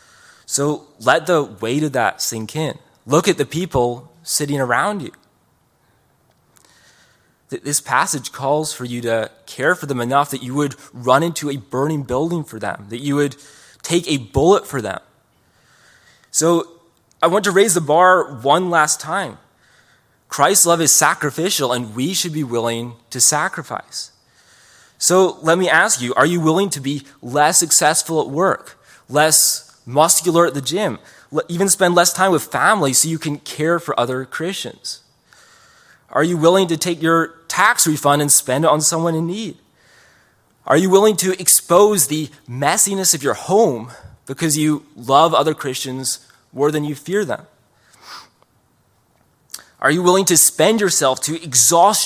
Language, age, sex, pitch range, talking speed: English, 20-39, male, 135-170 Hz, 160 wpm